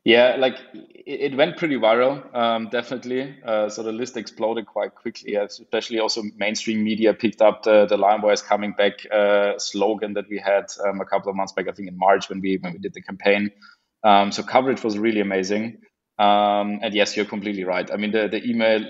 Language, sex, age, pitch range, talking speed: English, male, 20-39, 100-115 Hz, 215 wpm